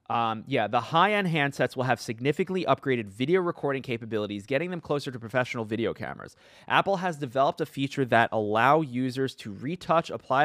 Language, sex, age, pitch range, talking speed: English, male, 30-49, 105-130 Hz, 170 wpm